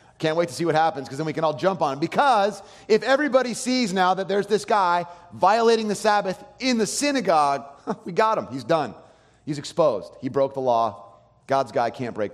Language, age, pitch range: English, 30-49, 115-175 Hz